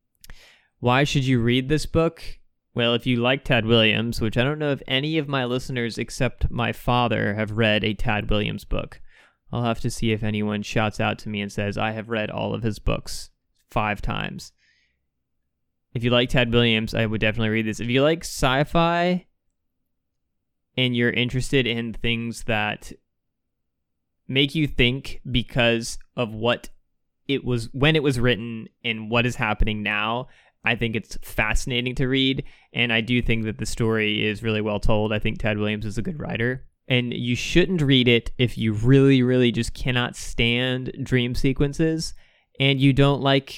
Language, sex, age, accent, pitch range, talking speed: English, male, 20-39, American, 110-130 Hz, 180 wpm